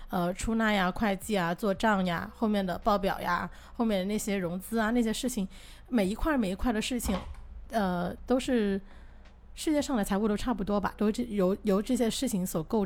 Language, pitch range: Chinese, 185-230 Hz